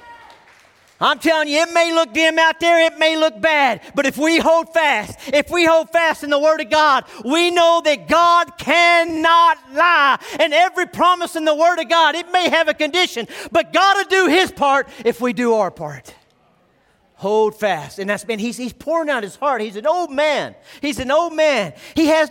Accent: American